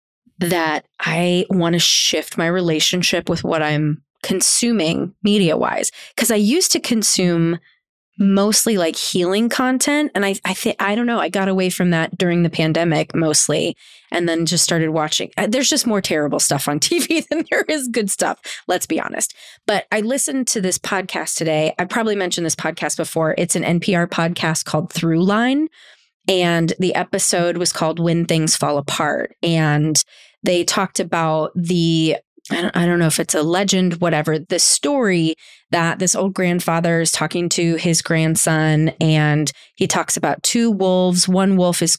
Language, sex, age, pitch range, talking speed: English, female, 20-39, 160-195 Hz, 170 wpm